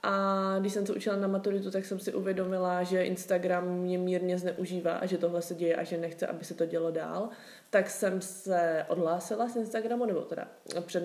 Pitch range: 180-210 Hz